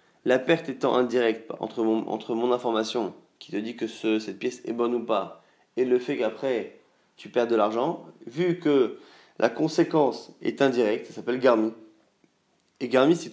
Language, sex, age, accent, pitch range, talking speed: French, male, 20-39, French, 120-170 Hz, 180 wpm